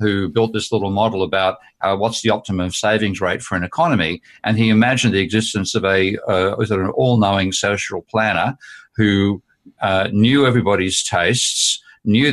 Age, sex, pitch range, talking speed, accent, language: 50-69, male, 100-115 Hz, 170 wpm, Australian, English